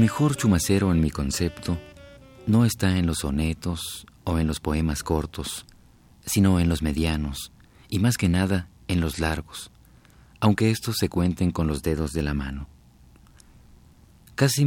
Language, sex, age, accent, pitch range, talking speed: Spanish, male, 40-59, Mexican, 75-95 Hz, 155 wpm